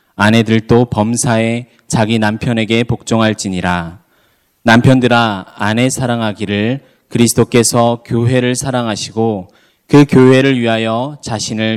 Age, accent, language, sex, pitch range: 20-39, native, Korean, male, 110-130 Hz